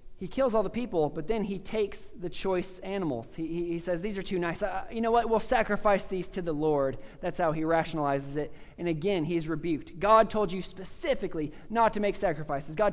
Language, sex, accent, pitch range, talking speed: English, male, American, 165-205 Hz, 220 wpm